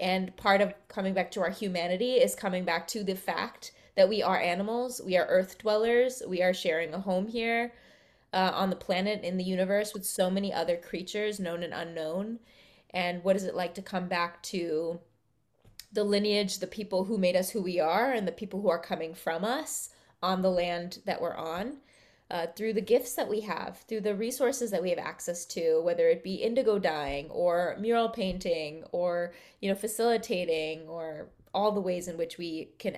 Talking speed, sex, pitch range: 200 wpm, female, 175-215 Hz